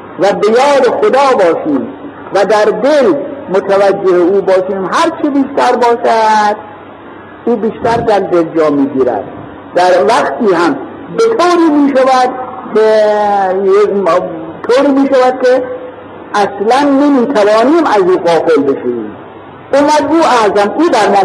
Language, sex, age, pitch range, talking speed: Persian, male, 50-69, 200-285 Hz, 115 wpm